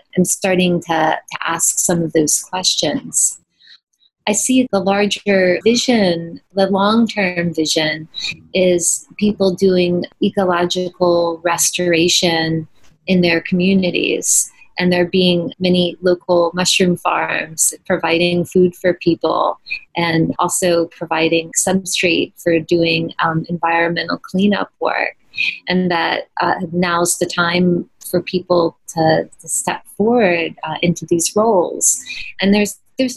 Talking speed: 120 wpm